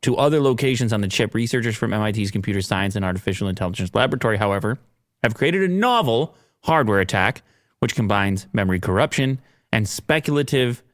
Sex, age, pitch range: male, 30-49, 100-125 Hz